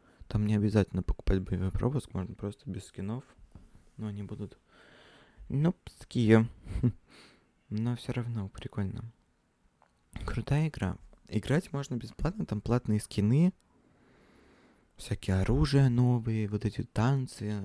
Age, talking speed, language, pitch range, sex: 20-39, 115 wpm, Russian, 100-120 Hz, male